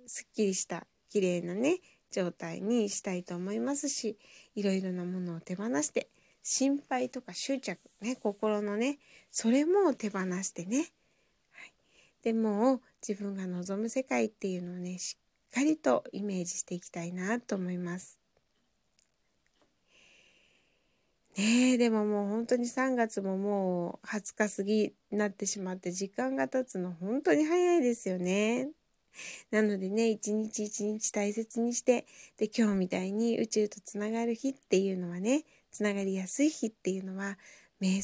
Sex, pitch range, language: female, 190-245 Hz, Japanese